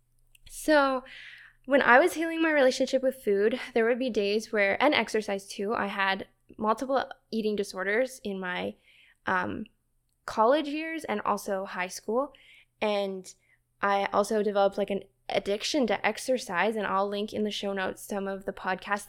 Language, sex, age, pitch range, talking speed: English, female, 10-29, 195-245 Hz, 160 wpm